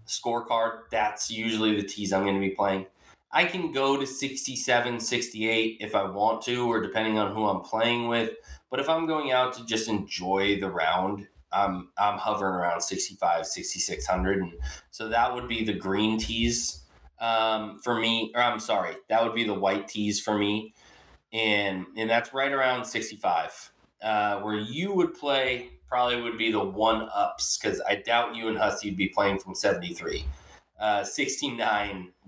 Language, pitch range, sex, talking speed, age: English, 95-125 Hz, male, 175 wpm, 20-39